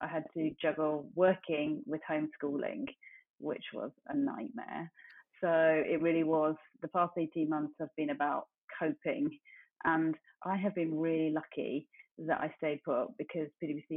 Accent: British